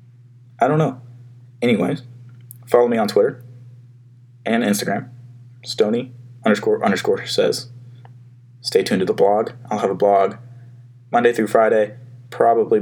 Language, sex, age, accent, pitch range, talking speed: English, male, 20-39, American, 120-125 Hz, 120 wpm